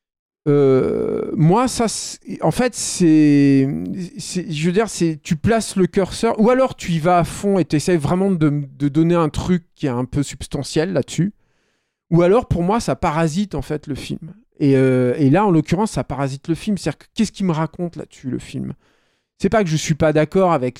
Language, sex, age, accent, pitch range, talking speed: French, male, 40-59, French, 135-190 Hz, 230 wpm